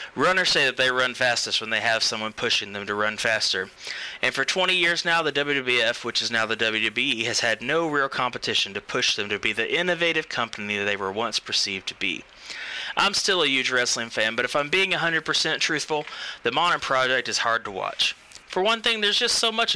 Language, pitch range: English, 120-195 Hz